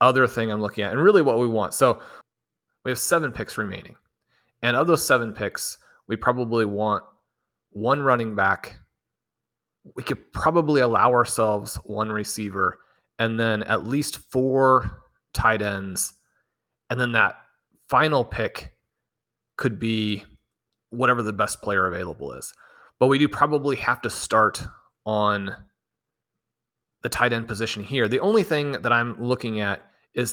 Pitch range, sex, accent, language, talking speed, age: 105-125 Hz, male, American, English, 150 wpm, 30-49